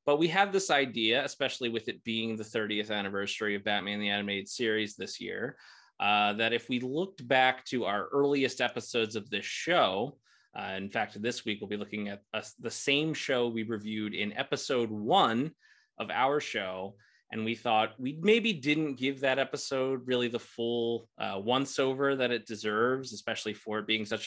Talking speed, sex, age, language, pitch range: 185 wpm, male, 30-49, English, 110-135 Hz